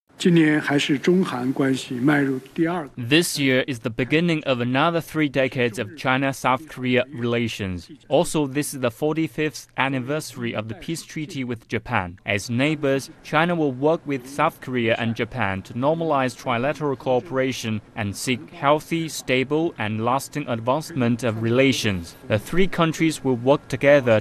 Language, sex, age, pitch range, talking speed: English, male, 20-39, 100-140 Hz, 135 wpm